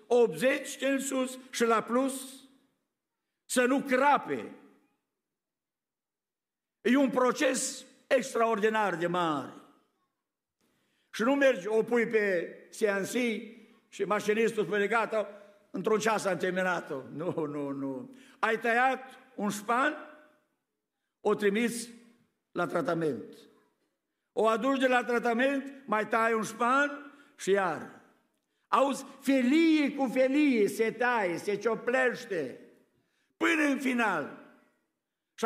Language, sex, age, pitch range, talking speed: Romanian, male, 60-79, 185-260 Hz, 105 wpm